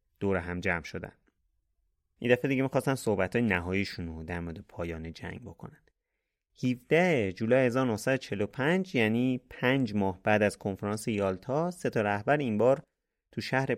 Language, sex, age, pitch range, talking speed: Persian, male, 30-49, 90-130 Hz, 145 wpm